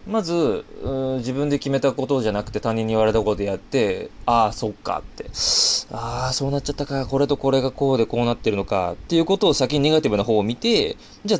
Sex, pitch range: male, 105-155 Hz